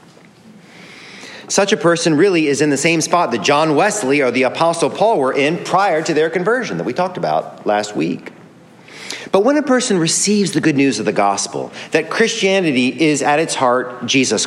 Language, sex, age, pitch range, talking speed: English, male, 40-59, 125-190 Hz, 190 wpm